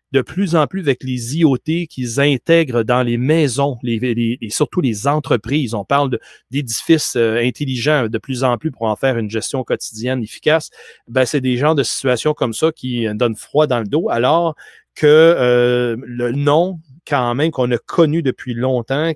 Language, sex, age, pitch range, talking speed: French, male, 30-49, 120-155 Hz, 190 wpm